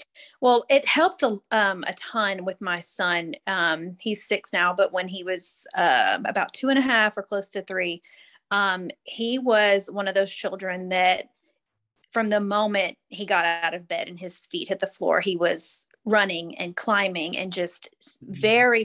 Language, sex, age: English, female, 30-49